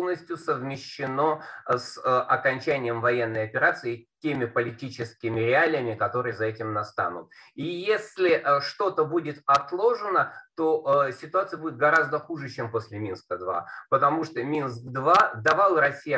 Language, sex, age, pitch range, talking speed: Russian, male, 30-49, 120-165 Hz, 110 wpm